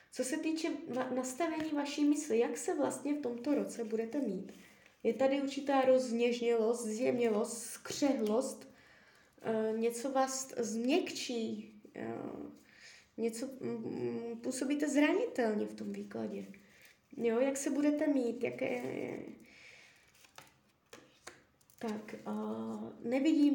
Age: 20-39